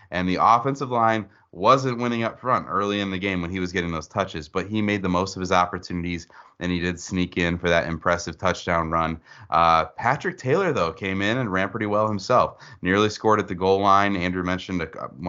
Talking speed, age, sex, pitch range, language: 225 wpm, 30-49, male, 85-105 Hz, English